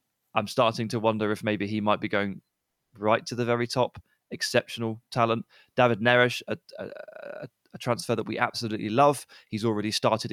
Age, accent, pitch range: 20-39, British, 110-130 Hz